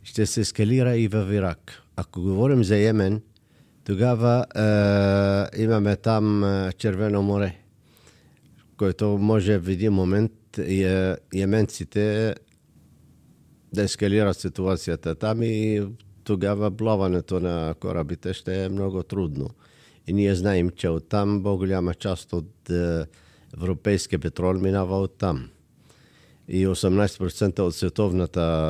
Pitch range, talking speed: 90-105 Hz, 115 wpm